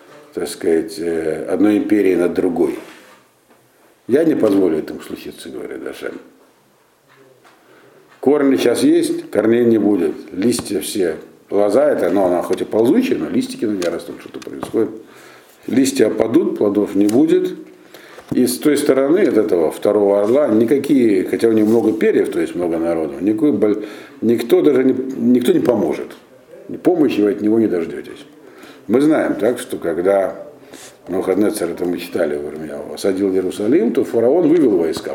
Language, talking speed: Russian, 145 wpm